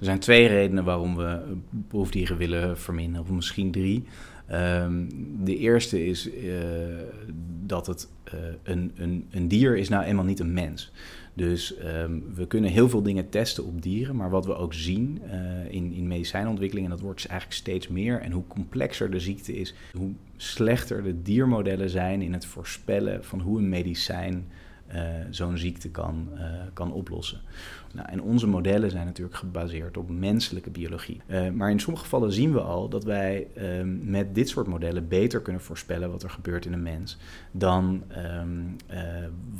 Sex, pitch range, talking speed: male, 85-95 Hz, 175 wpm